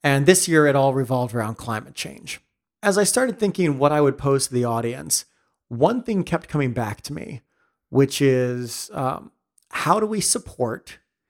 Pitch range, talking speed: 125-155 Hz, 180 wpm